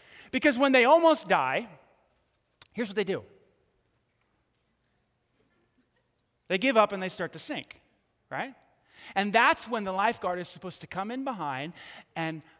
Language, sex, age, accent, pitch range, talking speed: English, male, 30-49, American, 155-250 Hz, 145 wpm